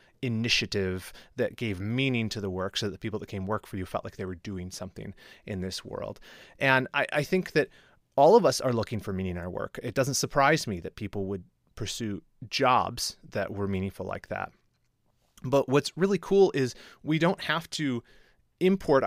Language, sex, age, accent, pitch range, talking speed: English, male, 30-49, American, 110-150 Hz, 200 wpm